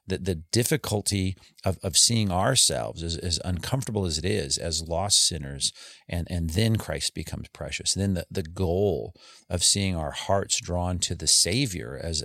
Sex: male